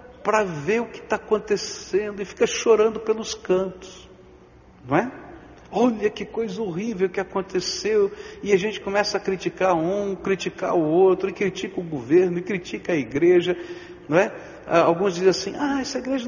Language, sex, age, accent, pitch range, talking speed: Portuguese, male, 60-79, Brazilian, 175-250 Hz, 165 wpm